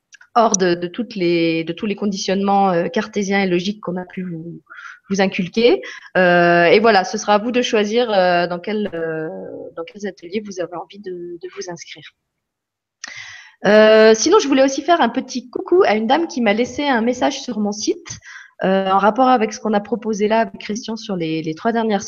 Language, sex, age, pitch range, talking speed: French, female, 20-39, 200-270 Hz, 200 wpm